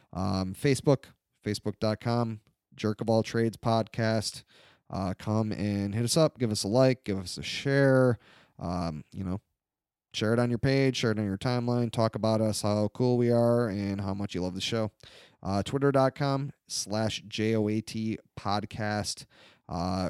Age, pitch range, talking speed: 30-49, 100-120 Hz, 165 wpm